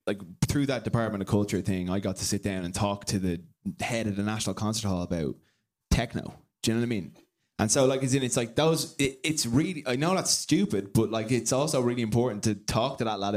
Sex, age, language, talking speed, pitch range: male, 20-39, English, 250 wpm, 100-125 Hz